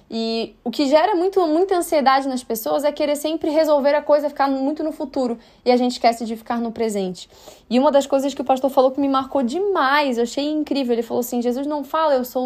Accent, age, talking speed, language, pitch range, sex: Brazilian, 10-29, 235 wpm, Portuguese, 235-295 Hz, female